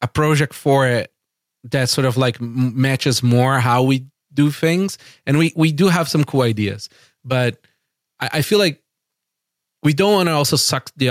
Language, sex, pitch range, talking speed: English, male, 115-140 Hz, 185 wpm